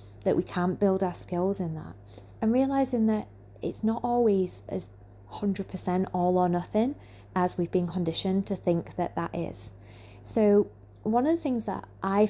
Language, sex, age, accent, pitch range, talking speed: English, female, 20-39, British, 170-215 Hz, 170 wpm